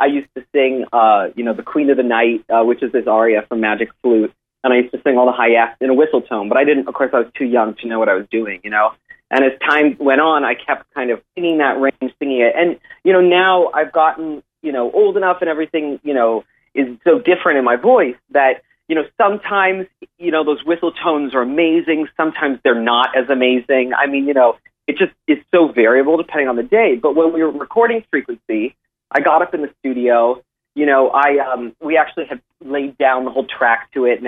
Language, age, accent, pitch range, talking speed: English, 30-49, American, 125-160 Hz, 245 wpm